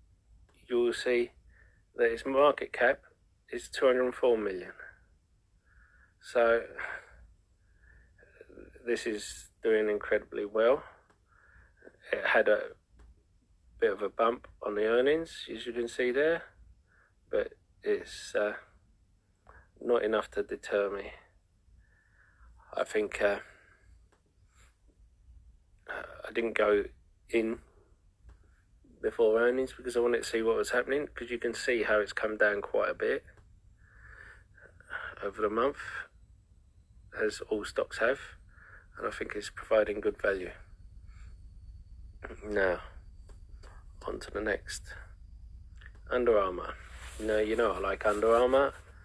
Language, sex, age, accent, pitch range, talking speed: English, male, 40-59, British, 90-145 Hz, 115 wpm